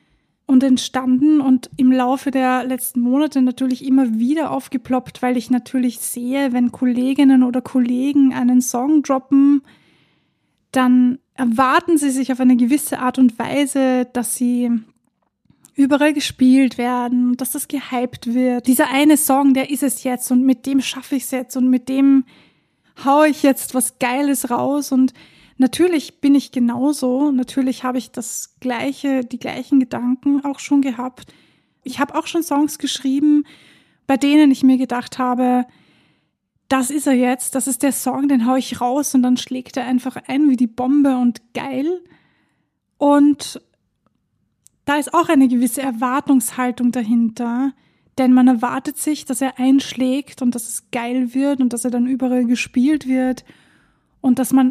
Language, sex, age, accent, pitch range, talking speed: German, female, 20-39, German, 250-275 Hz, 160 wpm